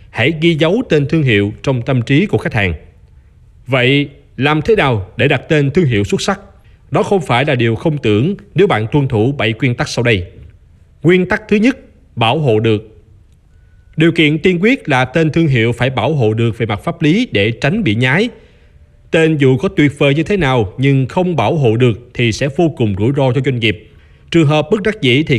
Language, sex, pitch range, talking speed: Vietnamese, male, 115-160 Hz, 220 wpm